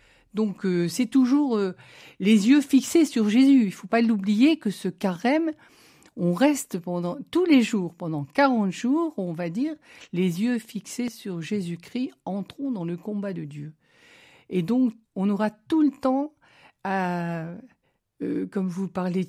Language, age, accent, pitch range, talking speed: French, 60-79, French, 165-225 Hz, 160 wpm